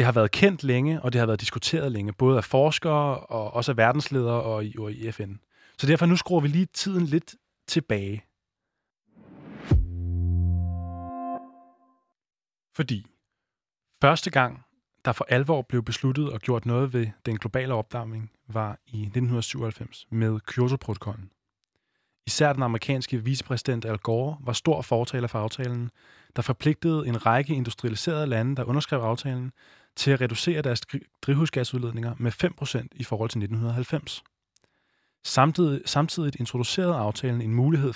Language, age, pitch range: Danish, 20-39, 110-140 Hz